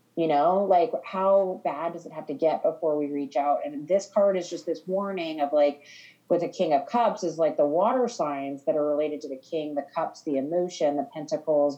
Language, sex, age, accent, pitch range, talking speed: English, female, 30-49, American, 145-180 Hz, 230 wpm